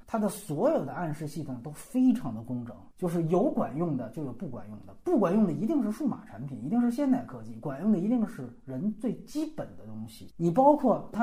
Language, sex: Chinese, male